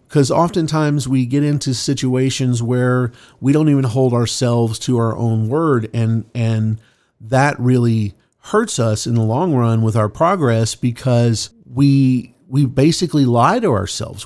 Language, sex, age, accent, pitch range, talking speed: English, male, 40-59, American, 115-140 Hz, 150 wpm